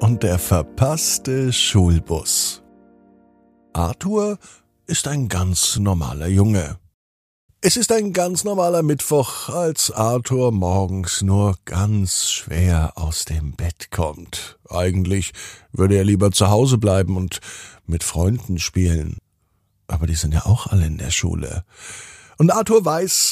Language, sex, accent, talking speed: German, male, German, 125 wpm